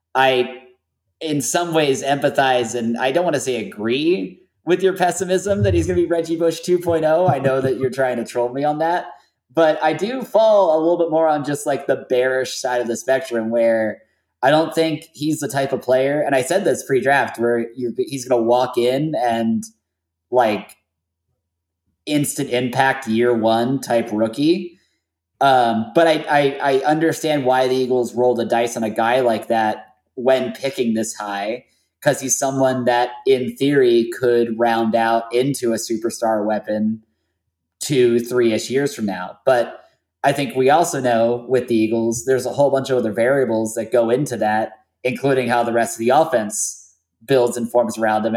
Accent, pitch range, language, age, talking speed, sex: American, 115-145 Hz, English, 20-39, 185 wpm, male